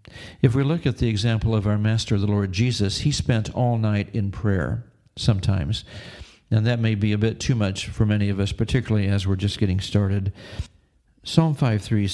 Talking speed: 195 wpm